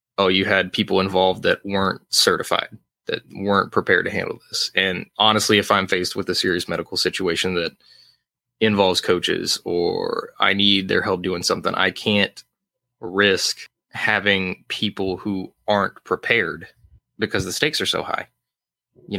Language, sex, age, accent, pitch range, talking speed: English, male, 20-39, American, 95-100 Hz, 155 wpm